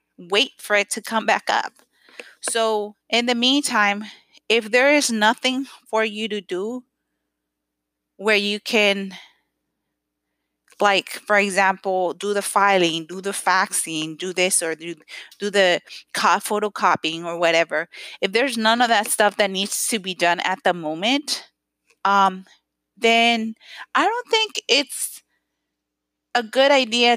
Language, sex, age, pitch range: English, female, 30-49, 190-235 Hz